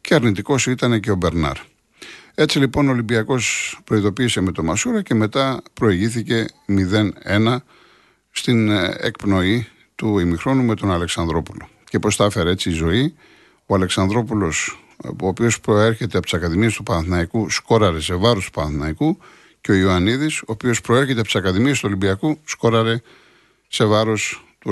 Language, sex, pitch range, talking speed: Greek, male, 95-120 Hz, 150 wpm